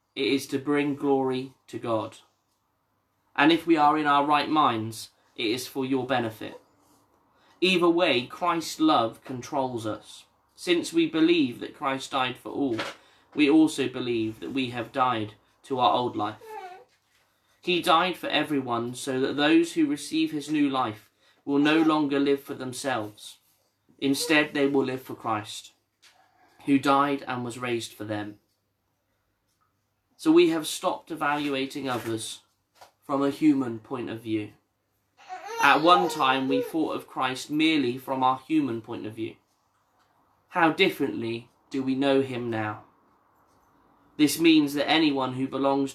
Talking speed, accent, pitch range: 150 wpm, British, 115-150 Hz